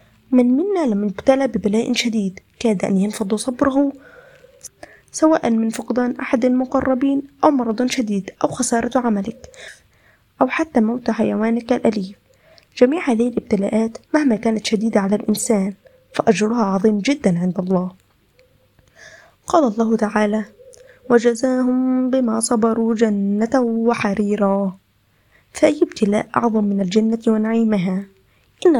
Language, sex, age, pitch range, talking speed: Arabic, female, 20-39, 210-260 Hz, 115 wpm